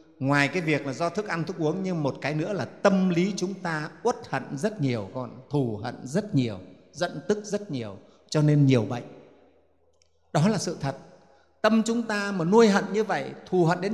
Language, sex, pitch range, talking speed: Vietnamese, male, 140-190 Hz, 215 wpm